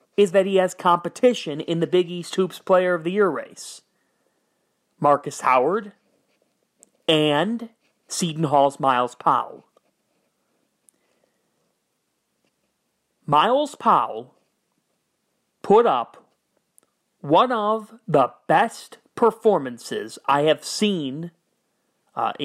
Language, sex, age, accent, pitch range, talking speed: English, male, 40-59, American, 155-210 Hz, 95 wpm